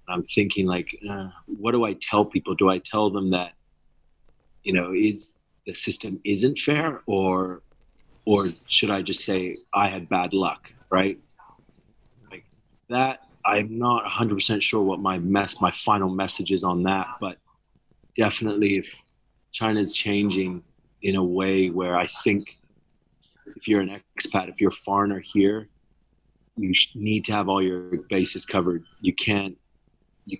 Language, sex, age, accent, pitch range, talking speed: English, male, 30-49, American, 95-105 Hz, 160 wpm